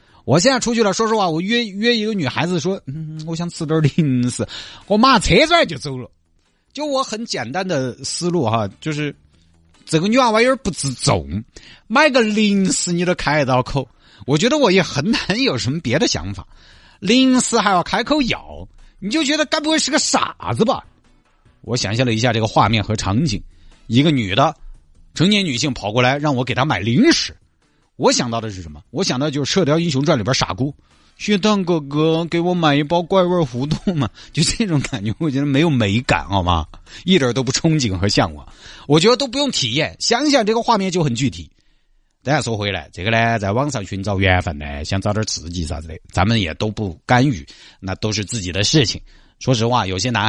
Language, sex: Chinese, male